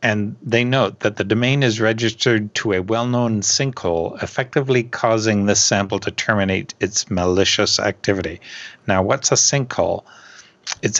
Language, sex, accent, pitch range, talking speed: English, male, American, 95-120 Hz, 140 wpm